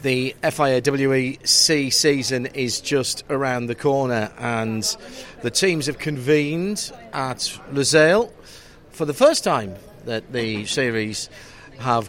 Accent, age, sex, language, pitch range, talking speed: British, 40-59, male, English, 125-165 Hz, 115 wpm